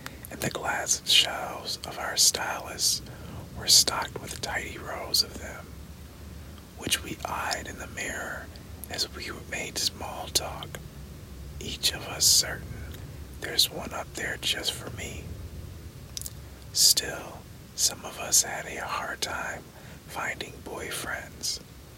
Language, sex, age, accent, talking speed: English, male, 40-59, American, 125 wpm